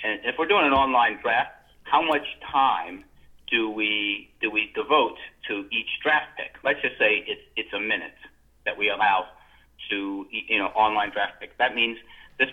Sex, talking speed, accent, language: male, 180 wpm, American, English